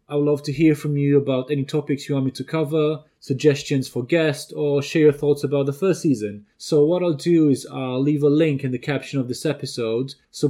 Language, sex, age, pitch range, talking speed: English, male, 30-49, 130-150 Hz, 240 wpm